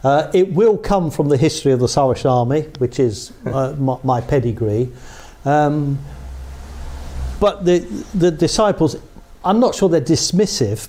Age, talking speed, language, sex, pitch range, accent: 60-79, 150 wpm, English, male, 125-160 Hz, British